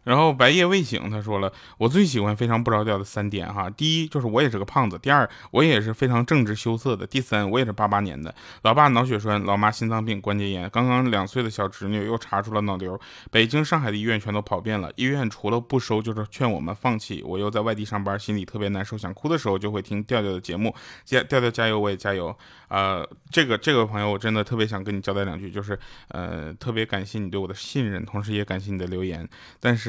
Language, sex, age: Chinese, male, 20-39